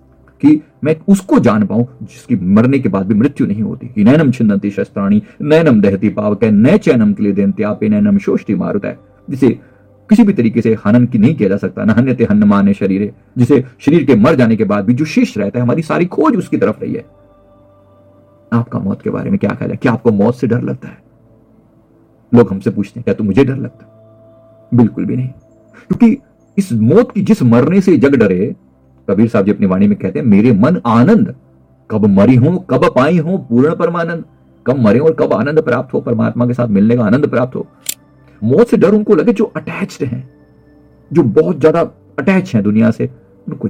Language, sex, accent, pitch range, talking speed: Hindi, male, native, 100-150 Hz, 155 wpm